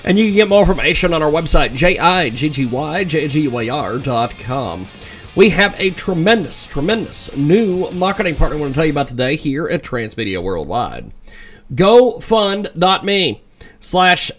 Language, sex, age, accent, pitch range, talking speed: English, male, 40-59, American, 150-205 Hz, 130 wpm